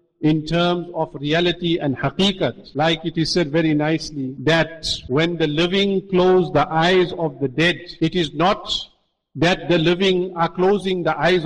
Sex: male